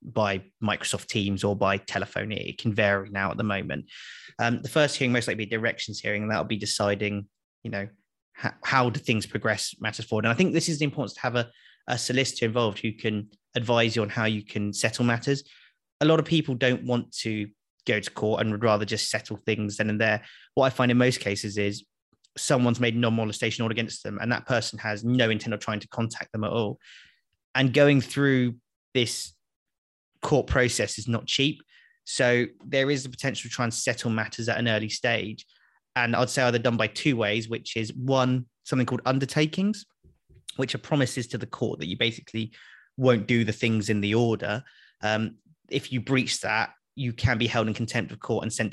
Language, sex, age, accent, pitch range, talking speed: English, male, 20-39, British, 105-125 Hz, 210 wpm